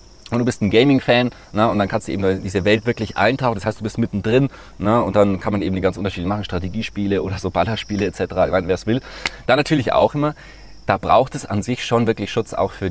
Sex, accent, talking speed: male, German, 230 wpm